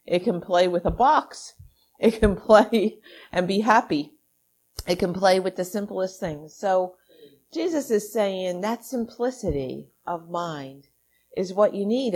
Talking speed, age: 155 wpm, 50-69